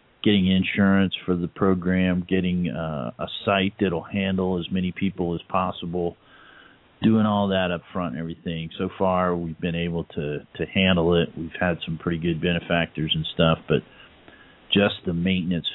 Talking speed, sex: 170 wpm, male